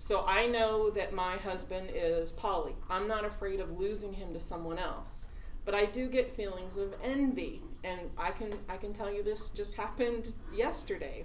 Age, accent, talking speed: 30-49, American, 180 wpm